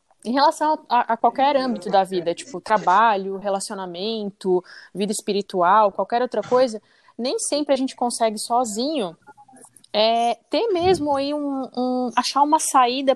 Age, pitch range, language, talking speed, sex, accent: 20-39, 205-255 Hz, Portuguese, 135 wpm, female, Brazilian